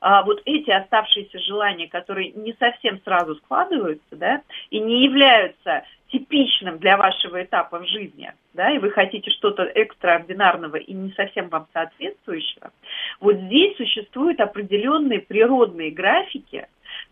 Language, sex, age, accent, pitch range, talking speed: Russian, female, 40-59, native, 195-275 Hz, 125 wpm